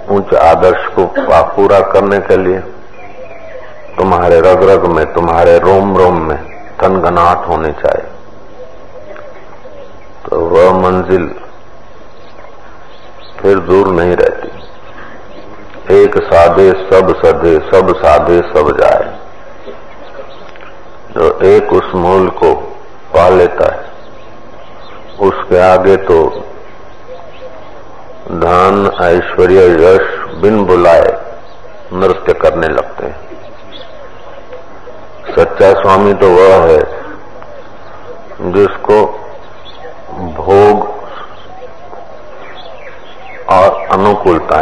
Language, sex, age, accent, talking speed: Hindi, male, 50-69, native, 85 wpm